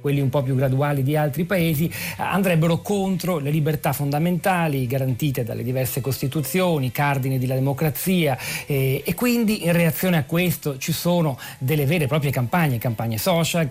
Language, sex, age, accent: Italian, male, 40-59, native